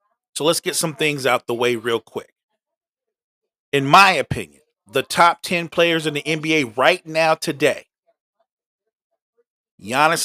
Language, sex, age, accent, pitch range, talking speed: English, male, 40-59, American, 145-190 Hz, 140 wpm